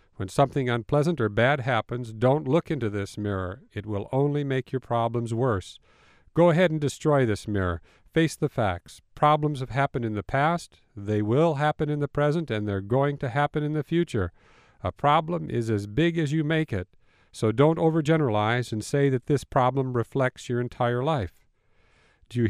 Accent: American